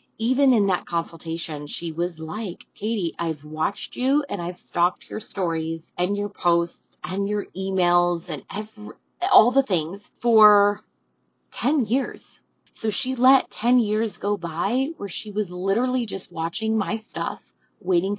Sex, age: female, 20-39